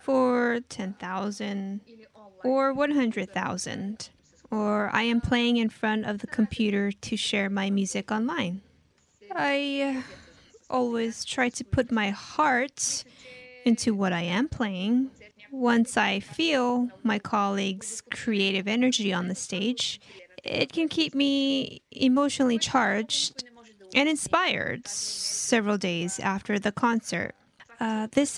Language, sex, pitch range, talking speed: English, female, 200-255 Hz, 115 wpm